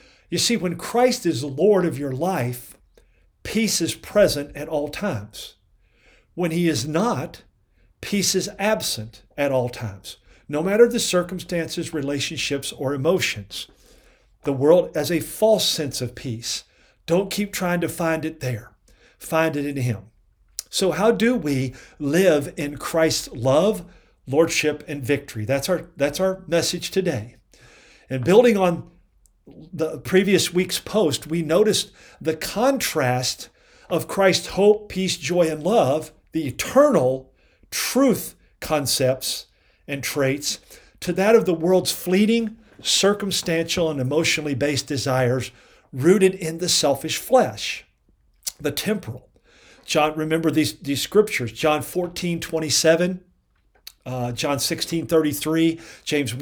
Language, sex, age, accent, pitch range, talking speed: English, male, 50-69, American, 140-185 Hz, 130 wpm